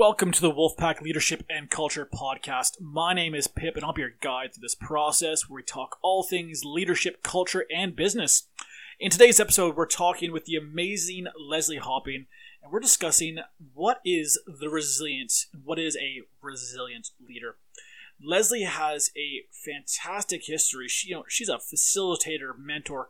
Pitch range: 150-185 Hz